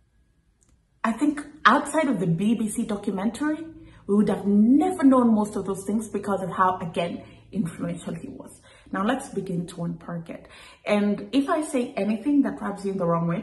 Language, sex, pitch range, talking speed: English, female, 190-245 Hz, 185 wpm